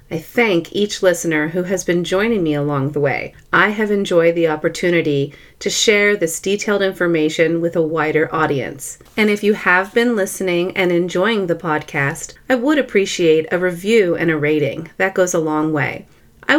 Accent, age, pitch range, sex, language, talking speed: American, 30-49, 160-205 Hz, female, English, 180 wpm